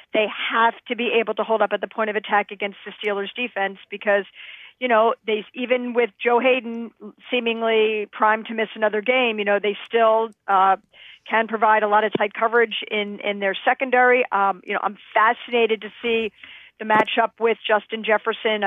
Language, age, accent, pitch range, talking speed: English, 50-69, American, 210-245 Hz, 185 wpm